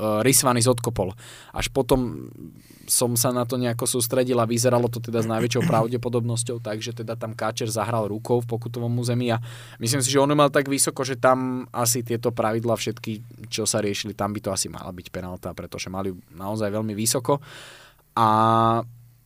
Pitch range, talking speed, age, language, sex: 110-125 Hz, 170 wpm, 20-39, Slovak, male